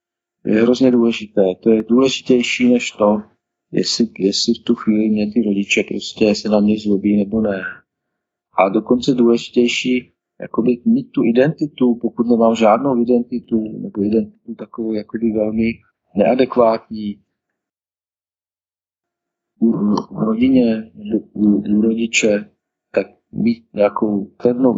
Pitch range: 105-120 Hz